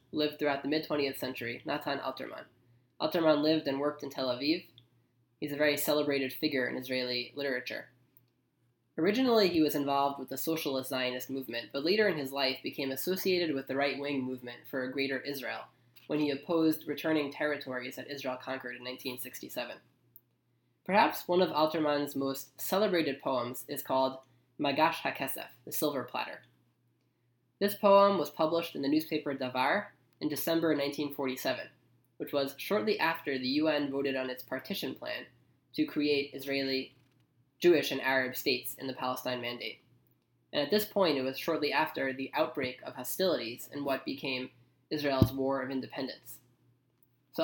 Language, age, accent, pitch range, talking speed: English, 10-29, American, 125-150 Hz, 155 wpm